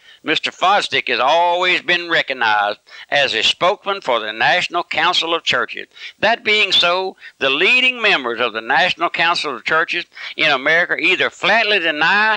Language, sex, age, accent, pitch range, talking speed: English, male, 60-79, American, 160-210 Hz, 155 wpm